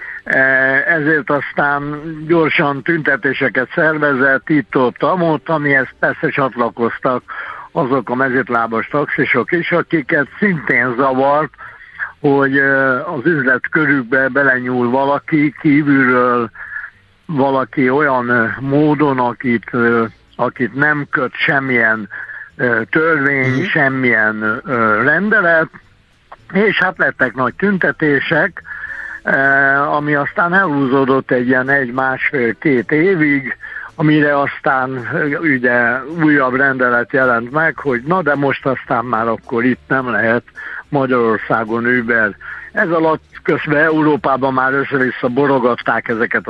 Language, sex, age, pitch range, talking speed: Hungarian, male, 60-79, 125-150 Hz, 100 wpm